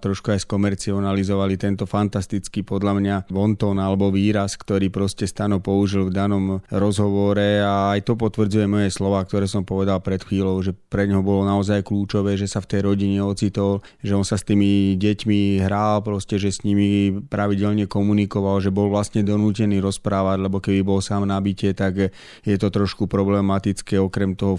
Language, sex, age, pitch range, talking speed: Slovak, male, 30-49, 95-100 Hz, 170 wpm